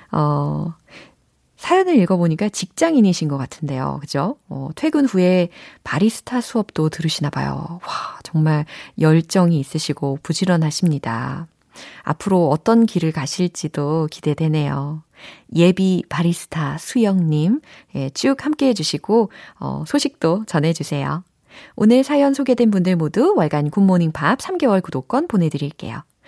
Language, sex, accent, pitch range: Korean, female, native, 155-245 Hz